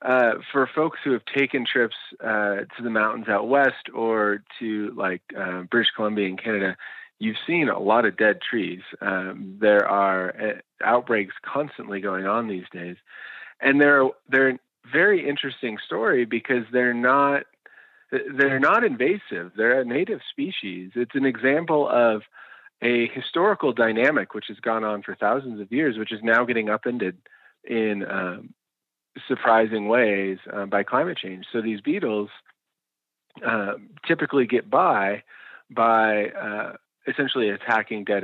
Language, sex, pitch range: English, male, 95-125 Hz